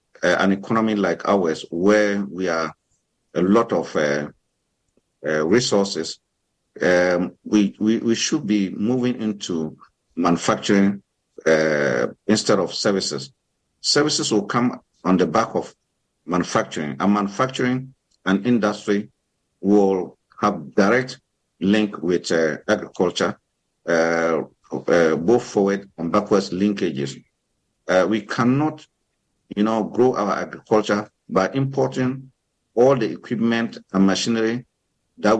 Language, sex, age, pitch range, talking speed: English, male, 50-69, 95-125 Hz, 115 wpm